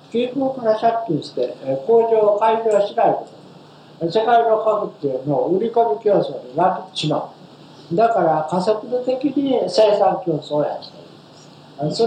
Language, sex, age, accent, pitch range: Japanese, male, 60-79, native, 150-230 Hz